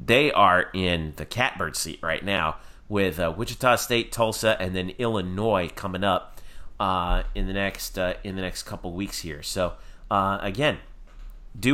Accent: American